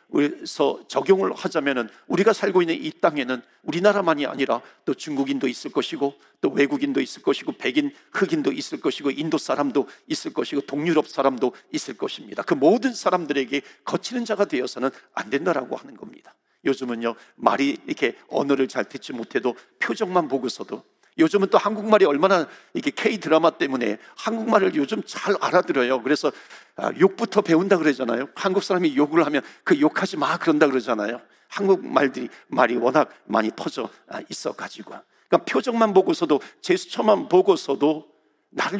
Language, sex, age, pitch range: Korean, male, 50-69, 140-215 Hz